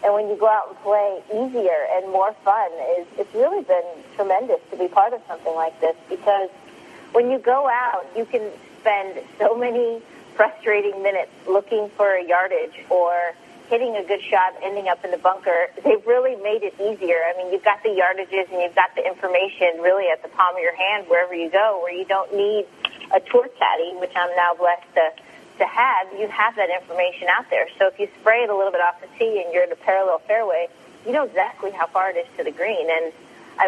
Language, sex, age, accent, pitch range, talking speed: English, female, 30-49, American, 175-215 Hz, 220 wpm